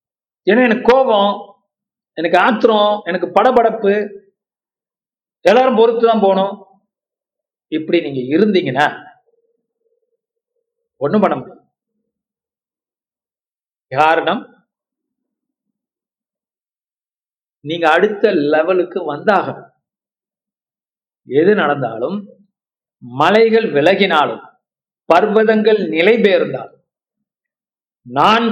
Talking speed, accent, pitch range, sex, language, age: 65 wpm, native, 195-260 Hz, male, Tamil, 50-69